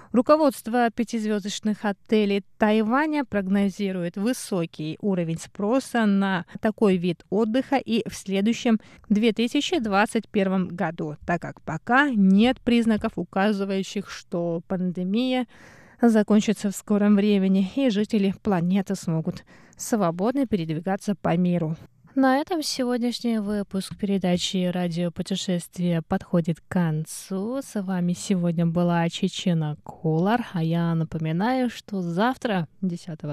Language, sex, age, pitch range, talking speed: Russian, female, 20-39, 180-230 Hz, 105 wpm